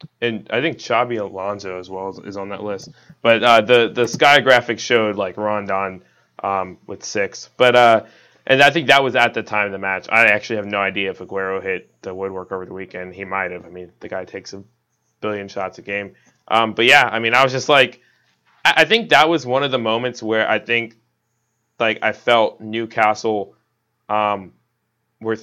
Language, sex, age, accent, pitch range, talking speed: English, male, 20-39, American, 100-120 Hz, 210 wpm